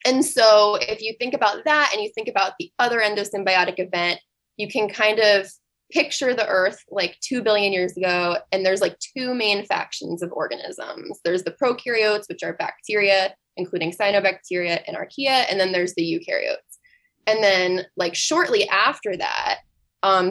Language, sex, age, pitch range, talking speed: English, female, 20-39, 185-225 Hz, 170 wpm